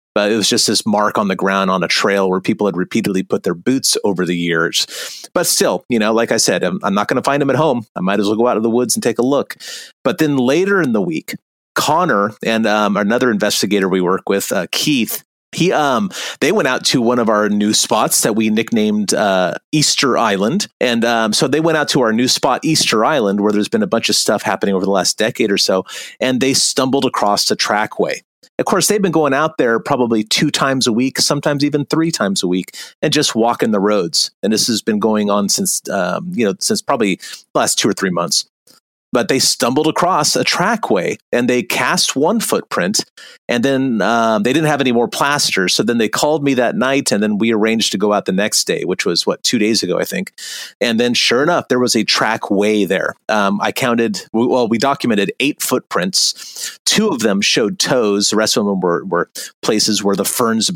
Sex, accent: male, American